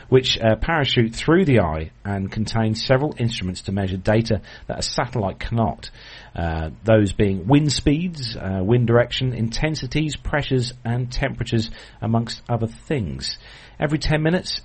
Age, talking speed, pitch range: 40-59, 145 wpm, 100-125 Hz